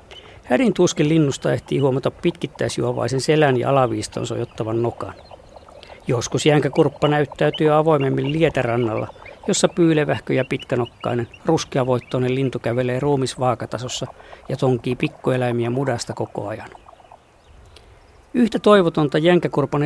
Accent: native